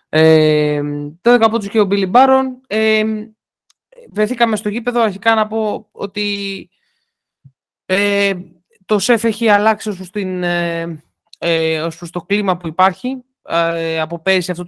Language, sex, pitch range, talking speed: Greek, male, 165-230 Hz, 135 wpm